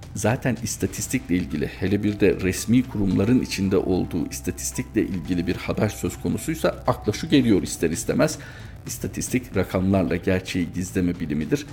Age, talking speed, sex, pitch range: 50-69, 135 wpm, male, 90-120 Hz